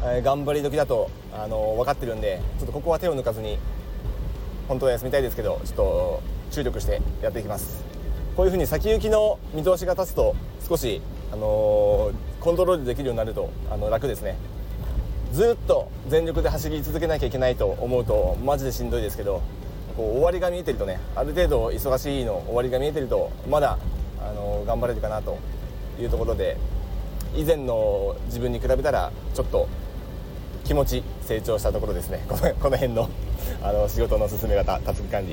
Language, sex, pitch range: Japanese, male, 110-185 Hz